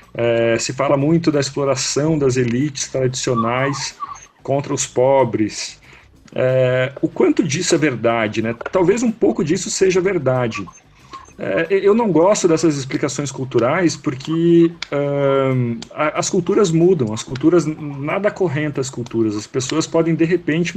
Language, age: Portuguese, 40-59